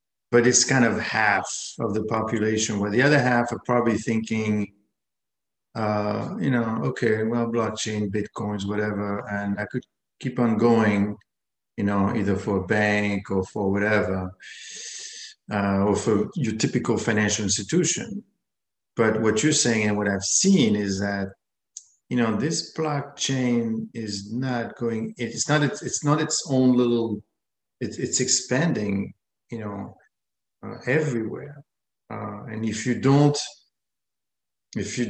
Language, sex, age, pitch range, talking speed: English, male, 50-69, 105-125 Hz, 140 wpm